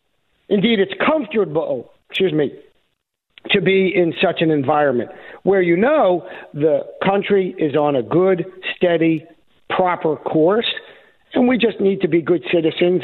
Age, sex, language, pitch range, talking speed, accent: 50-69, male, English, 150-190 Hz, 145 wpm, American